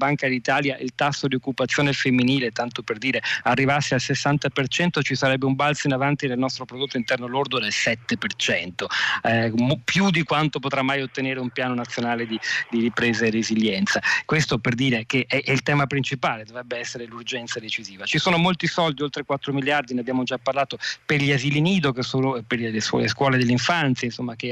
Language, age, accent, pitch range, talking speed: Italian, 40-59, native, 120-140 Hz, 190 wpm